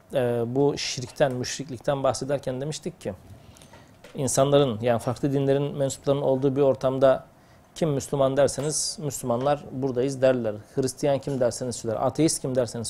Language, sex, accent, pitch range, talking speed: Turkish, male, native, 125-150 Hz, 130 wpm